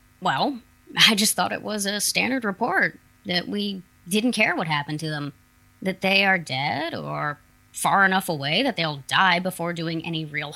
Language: English